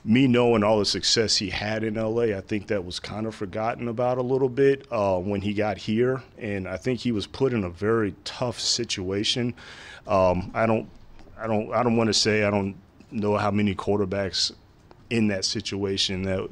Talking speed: 200 wpm